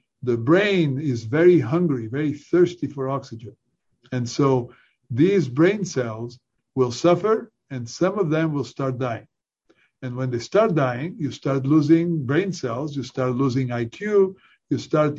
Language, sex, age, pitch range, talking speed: English, male, 50-69, 130-165 Hz, 155 wpm